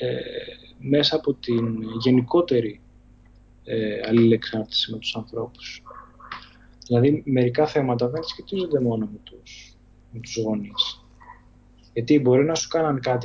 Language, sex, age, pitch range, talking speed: Greek, male, 20-39, 115-140 Hz, 120 wpm